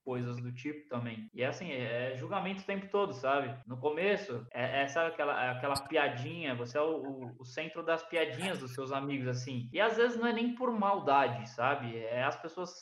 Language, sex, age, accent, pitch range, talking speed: Portuguese, male, 20-39, Brazilian, 125-165 Hz, 210 wpm